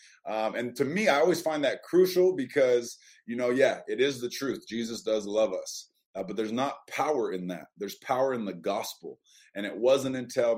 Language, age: English, 30-49